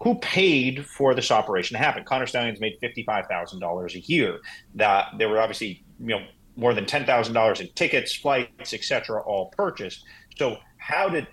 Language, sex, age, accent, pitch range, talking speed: English, male, 30-49, American, 110-135 Hz, 190 wpm